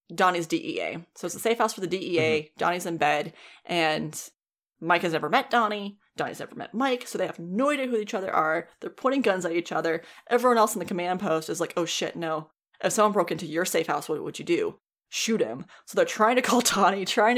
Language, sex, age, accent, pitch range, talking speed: English, female, 20-39, American, 170-230 Hz, 240 wpm